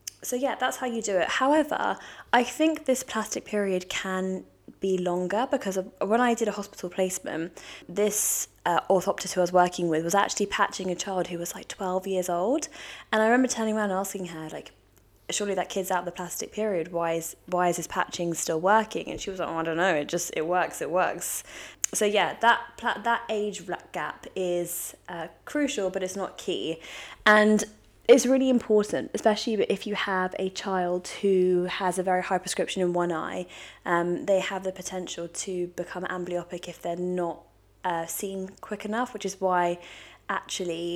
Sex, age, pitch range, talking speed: female, 20-39, 175-205 Hz, 195 wpm